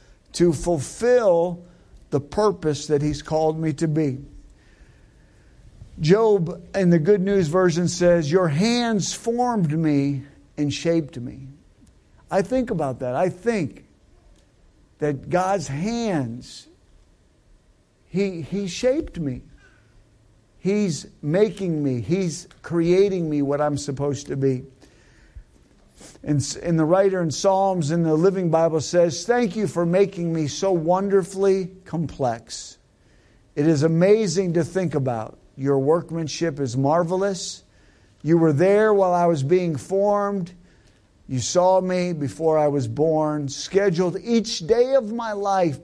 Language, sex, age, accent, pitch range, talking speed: English, male, 50-69, American, 135-190 Hz, 130 wpm